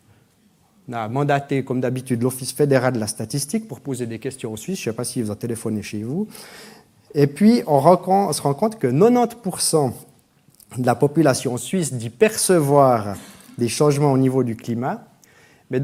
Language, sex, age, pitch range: French, male, 30-49, 120-170 Hz